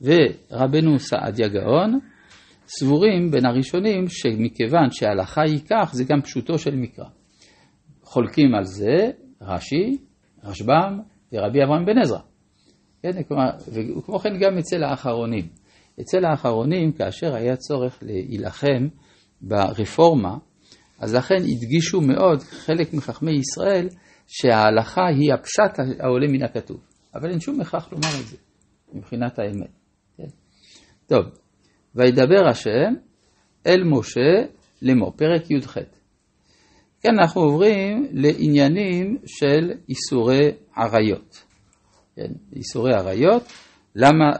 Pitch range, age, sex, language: 115-165 Hz, 50-69, male, Hebrew